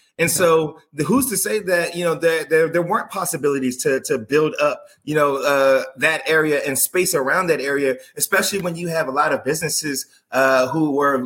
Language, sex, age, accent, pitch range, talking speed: English, male, 20-39, American, 140-175 Hz, 205 wpm